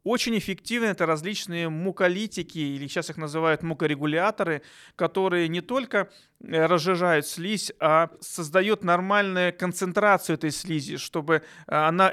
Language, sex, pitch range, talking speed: Russian, male, 160-200 Hz, 115 wpm